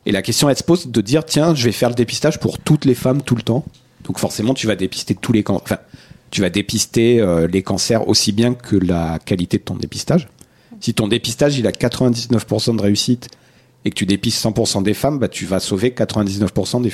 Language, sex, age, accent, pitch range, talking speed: French, male, 40-59, French, 105-130 Hz, 230 wpm